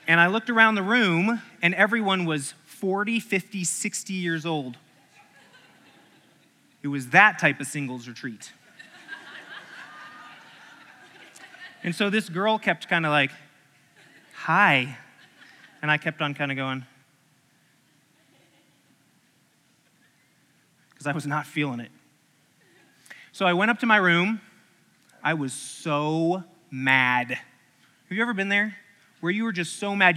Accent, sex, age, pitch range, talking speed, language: American, male, 20-39, 150-215 Hz, 130 wpm, English